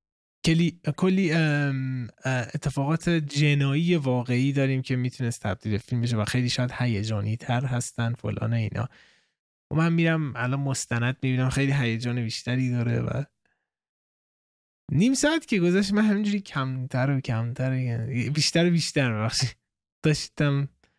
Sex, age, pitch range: male, 20-39, 120-170 Hz